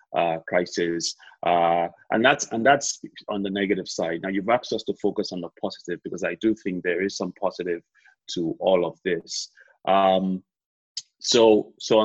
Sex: male